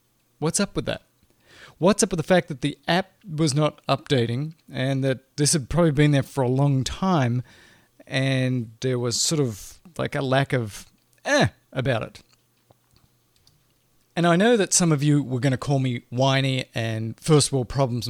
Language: English